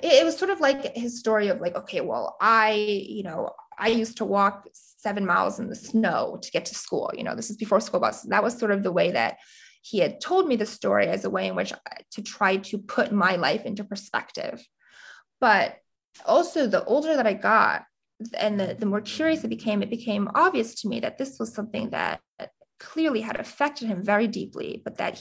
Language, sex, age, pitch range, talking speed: English, female, 20-39, 210-290 Hz, 220 wpm